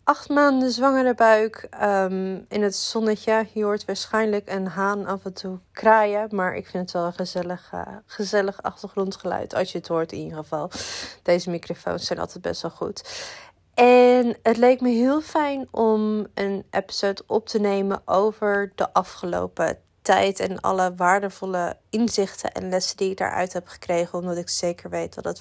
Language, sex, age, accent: Dutch, female, 20-39, Dutch